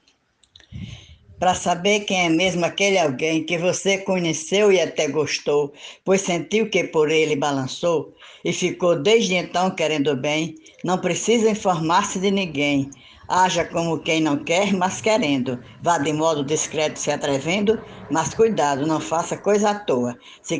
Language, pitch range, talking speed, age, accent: Portuguese, 155-200 Hz, 150 wpm, 60-79, Brazilian